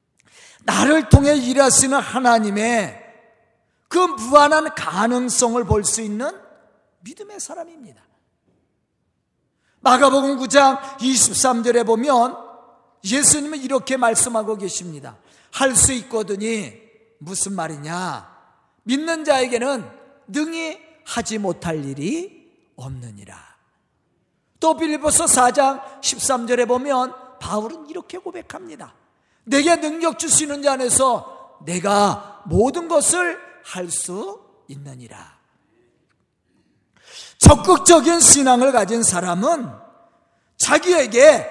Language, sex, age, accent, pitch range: Korean, male, 40-59, native, 220-305 Hz